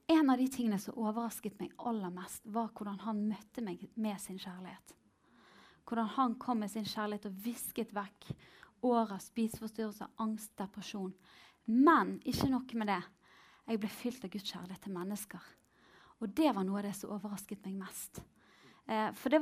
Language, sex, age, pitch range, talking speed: English, female, 20-39, 215-270 Hz, 165 wpm